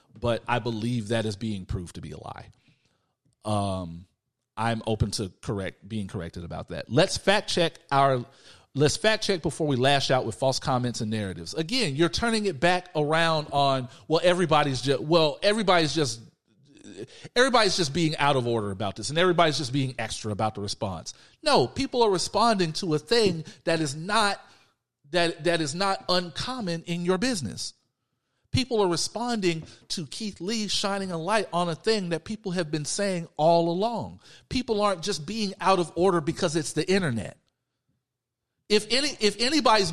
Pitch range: 130-205 Hz